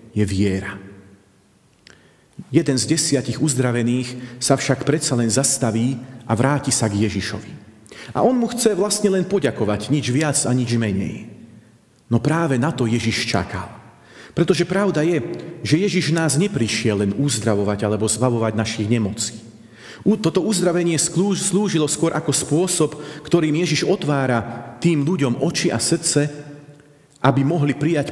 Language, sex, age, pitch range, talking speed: Slovak, male, 40-59, 115-150 Hz, 135 wpm